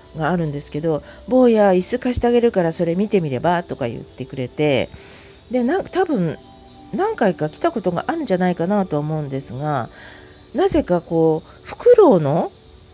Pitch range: 140-215 Hz